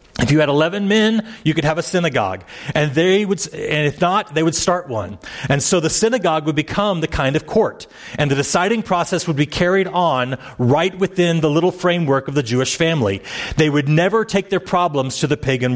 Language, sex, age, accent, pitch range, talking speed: English, male, 40-59, American, 145-180 Hz, 215 wpm